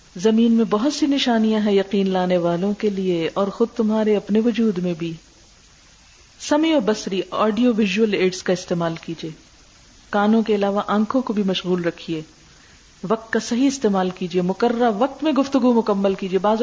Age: 40-59